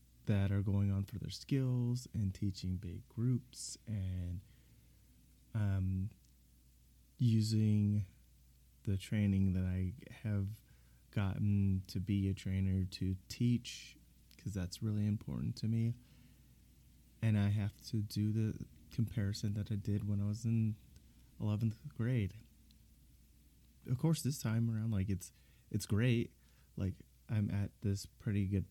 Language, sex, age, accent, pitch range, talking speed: English, male, 20-39, American, 85-110 Hz, 130 wpm